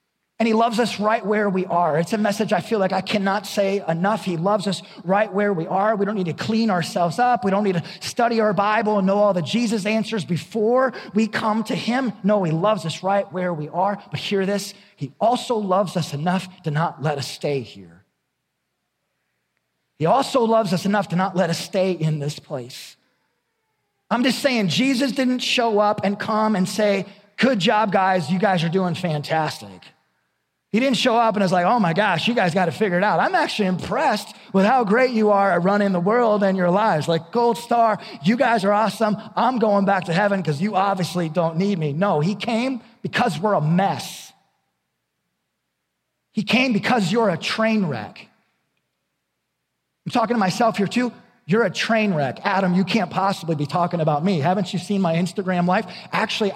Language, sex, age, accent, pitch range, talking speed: English, male, 30-49, American, 180-220 Hz, 205 wpm